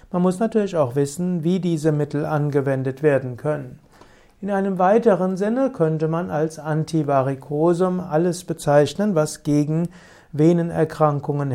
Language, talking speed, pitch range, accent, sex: German, 125 wpm, 140-170 Hz, German, male